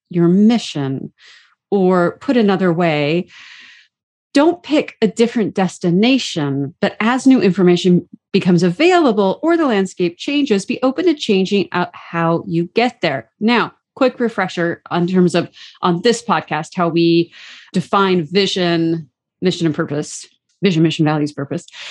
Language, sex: English, female